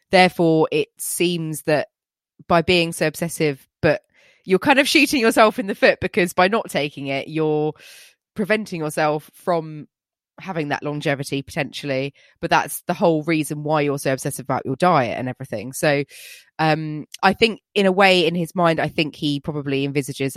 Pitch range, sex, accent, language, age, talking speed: 140-175 Hz, female, British, English, 20-39, 175 wpm